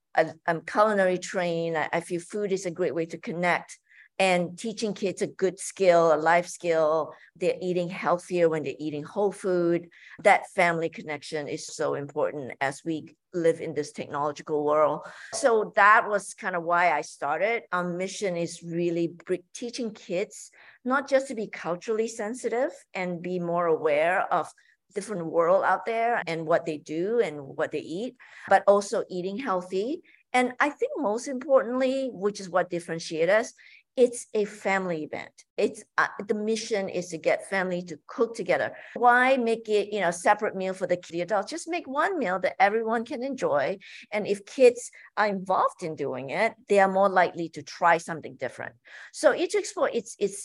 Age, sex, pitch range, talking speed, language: 50-69, female, 170-225 Hz, 175 wpm, English